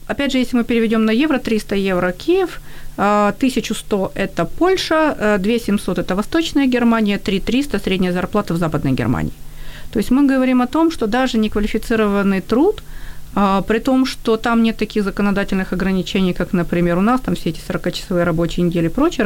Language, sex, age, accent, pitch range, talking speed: Ukrainian, female, 40-59, native, 180-230 Hz, 175 wpm